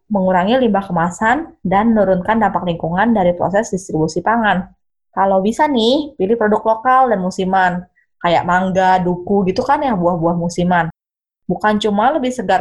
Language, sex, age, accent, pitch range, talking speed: Indonesian, female, 20-39, native, 180-235 Hz, 150 wpm